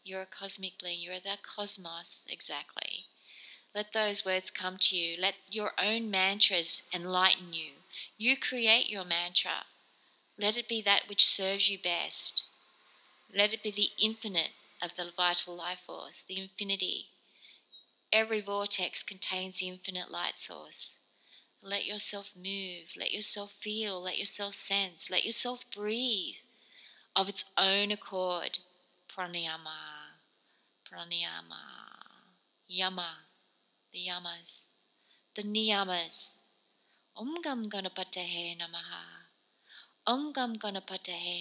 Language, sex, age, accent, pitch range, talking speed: English, female, 30-49, Australian, 180-210 Hz, 115 wpm